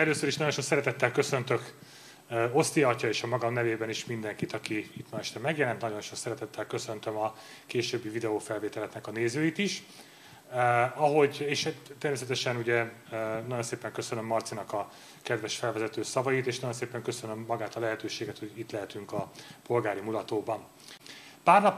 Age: 30-49